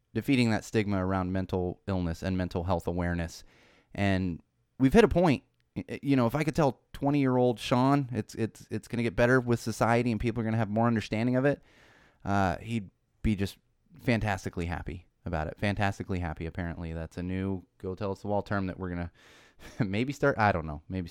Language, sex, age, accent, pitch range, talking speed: English, male, 30-49, American, 90-115 Hz, 195 wpm